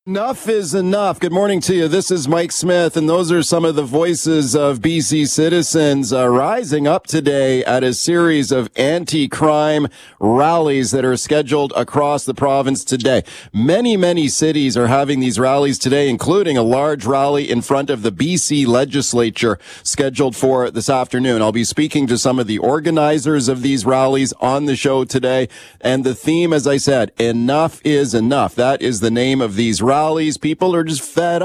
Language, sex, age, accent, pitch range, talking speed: English, male, 40-59, American, 130-155 Hz, 185 wpm